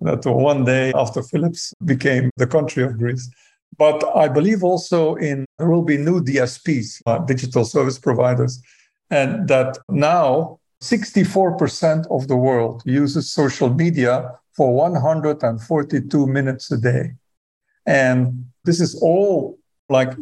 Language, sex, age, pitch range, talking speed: English, male, 50-69, 130-170 Hz, 130 wpm